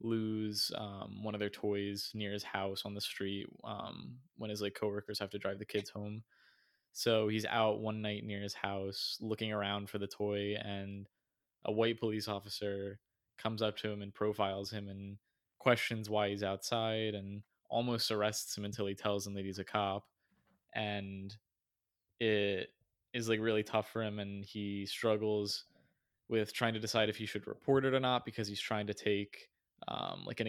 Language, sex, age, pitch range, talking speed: English, male, 20-39, 100-110 Hz, 185 wpm